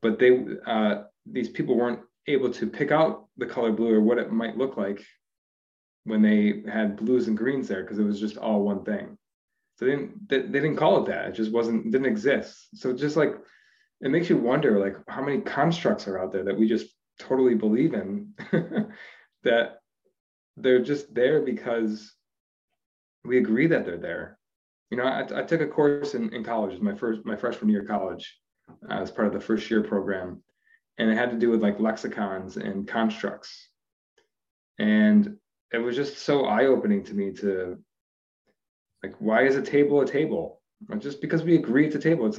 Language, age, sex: English, 20-39, male